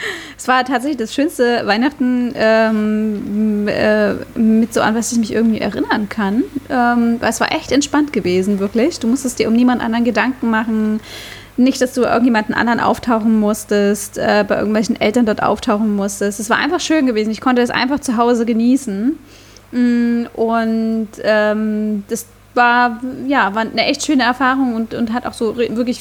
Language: German